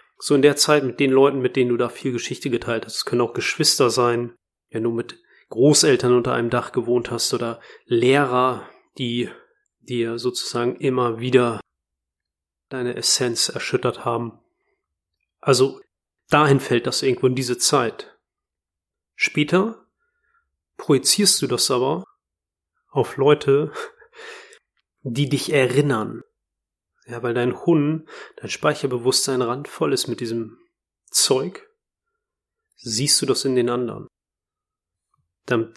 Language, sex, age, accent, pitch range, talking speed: German, male, 30-49, German, 120-145 Hz, 125 wpm